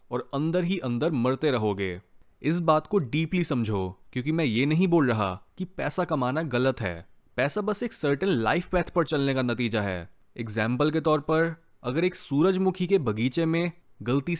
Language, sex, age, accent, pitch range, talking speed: Hindi, male, 20-39, native, 120-175 Hz, 185 wpm